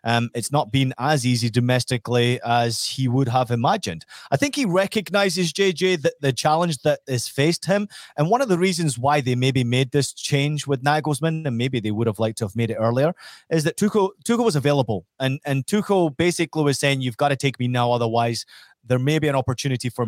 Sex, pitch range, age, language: male, 125-170 Hz, 30-49, English